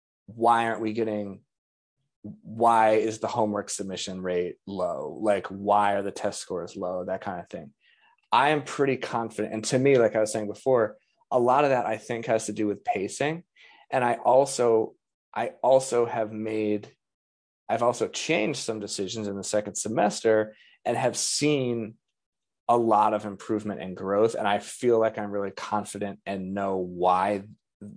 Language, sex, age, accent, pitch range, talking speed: English, male, 30-49, American, 100-125 Hz, 170 wpm